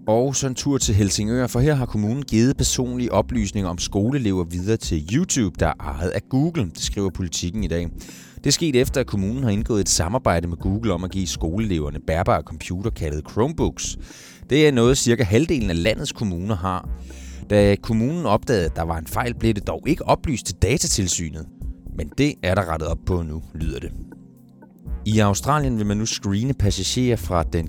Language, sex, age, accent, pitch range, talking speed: Danish, male, 30-49, native, 80-110 Hz, 195 wpm